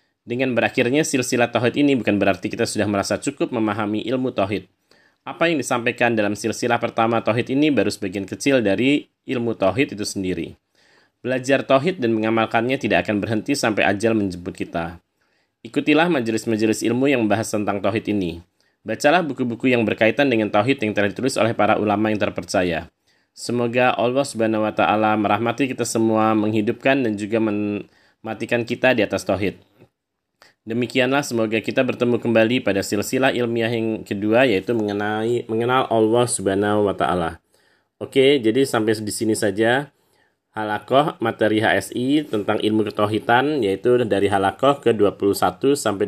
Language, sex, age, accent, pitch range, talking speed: Indonesian, male, 20-39, native, 100-120 Hz, 150 wpm